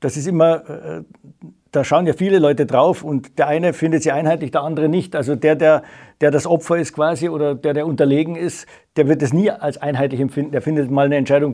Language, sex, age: German, male, 50-69